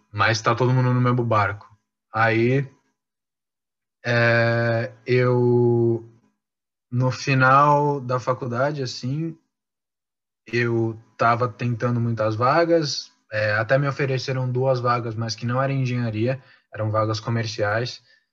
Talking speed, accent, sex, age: 105 wpm, Brazilian, male, 20-39